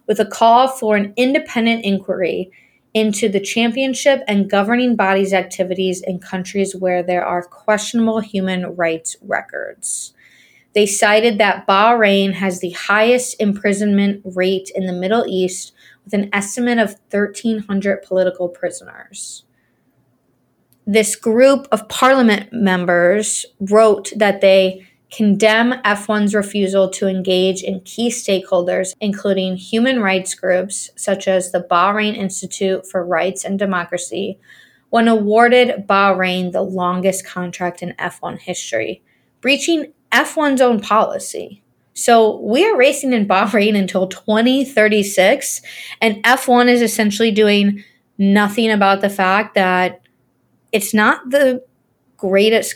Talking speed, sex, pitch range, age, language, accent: 120 wpm, female, 185-225 Hz, 20-39, English, American